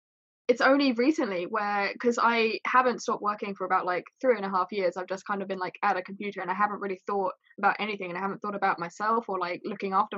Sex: female